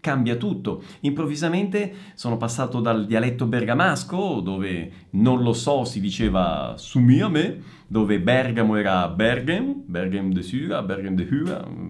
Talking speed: 135 wpm